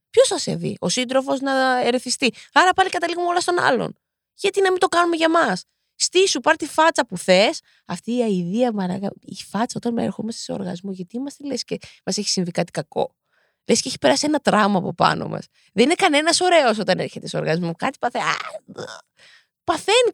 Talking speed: 195 wpm